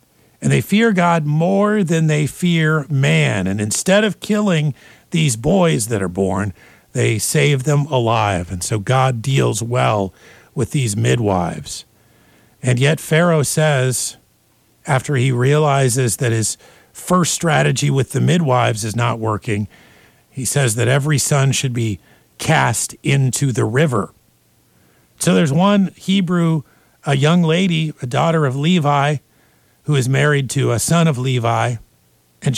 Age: 50-69